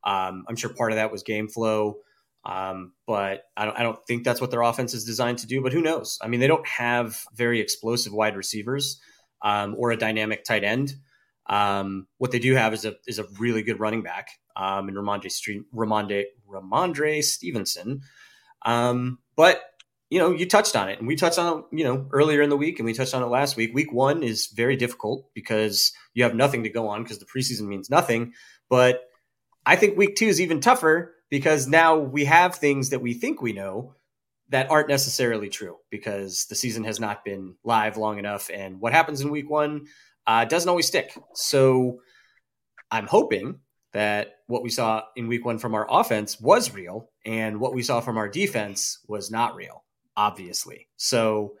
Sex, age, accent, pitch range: male, 20-39, American, 110-140 Hz